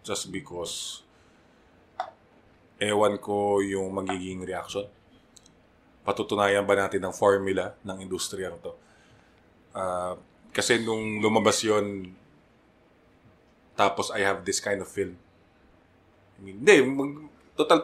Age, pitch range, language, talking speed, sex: 20-39, 95-110 Hz, English, 100 wpm, male